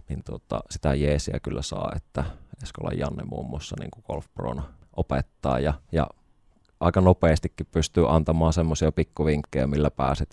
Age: 20-39